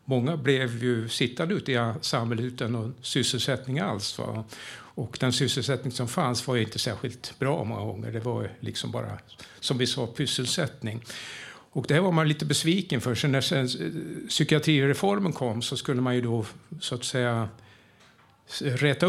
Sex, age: male, 60-79